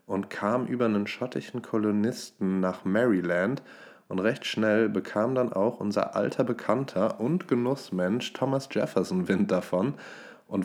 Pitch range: 95-120 Hz